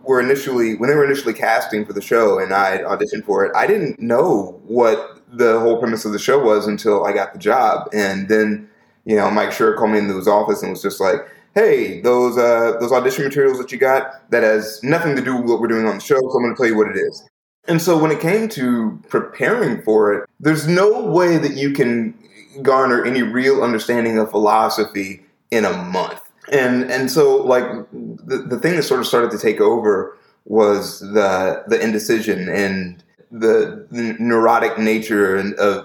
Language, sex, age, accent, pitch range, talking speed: English, male, 30-49, American, 105-145 Hz, 210 wpm